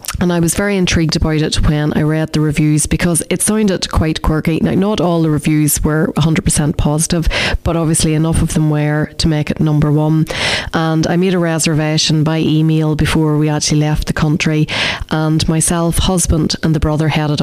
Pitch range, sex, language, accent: 155-170 Hz, female, English, Irish